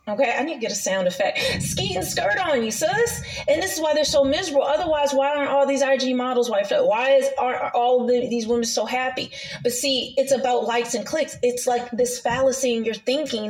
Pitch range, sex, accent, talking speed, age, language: 240-290 Hz, female, American, 245 wpm, 30-49, English